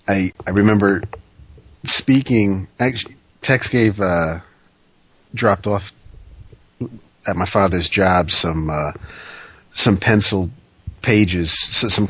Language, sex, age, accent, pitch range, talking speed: English, male, 40-59, American, 90-110 Hz, 100 wpm